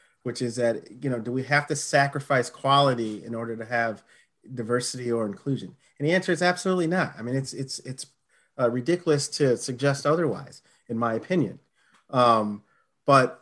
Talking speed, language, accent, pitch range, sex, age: 175 wpm, English, American, 125-155 Hz, male, 40-59